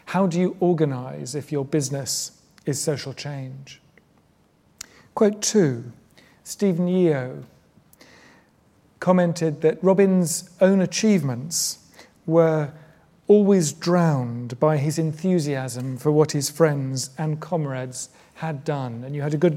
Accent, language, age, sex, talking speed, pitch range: British, English, 40-59, male, 115 wpm, 140-165 Hz